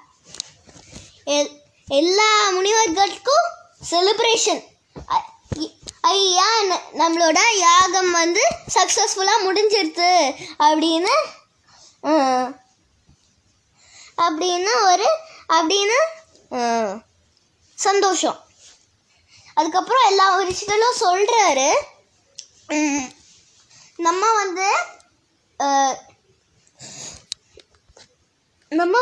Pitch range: 295-405 Hz